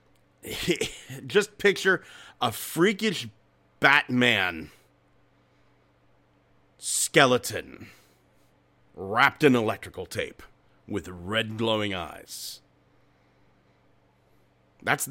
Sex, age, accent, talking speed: male, 40-59, American, 60 wpm